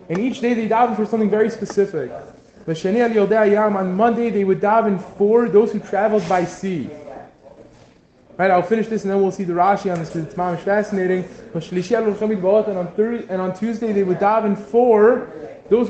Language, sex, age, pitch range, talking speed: English, male, 20-39, 180-220 Hz, 175 wpm